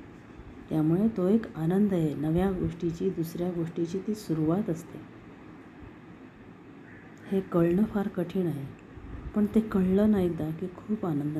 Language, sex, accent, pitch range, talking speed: Marathi, female, native, 155-185 Hz, 130 wpm